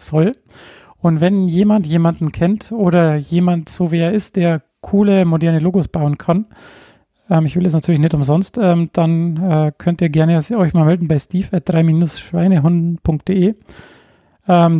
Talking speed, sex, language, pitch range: 155 wpm, male, German, 155-180 Hz